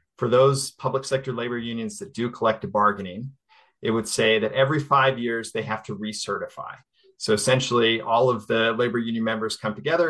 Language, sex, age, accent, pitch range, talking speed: English, male, 30-49, American, 110-130 Hz, 185 wpm